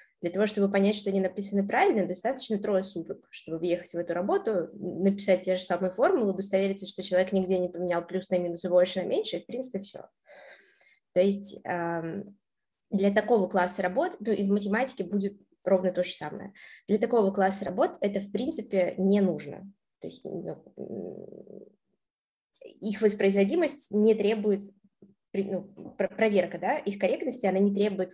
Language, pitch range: Russian, 180-205 Hz